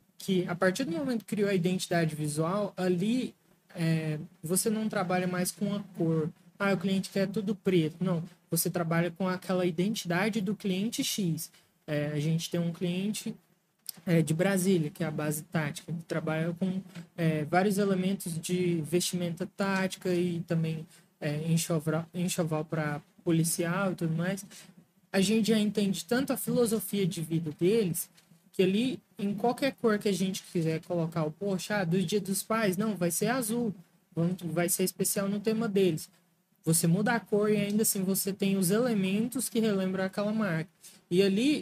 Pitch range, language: 175-205 Hz, Portuguese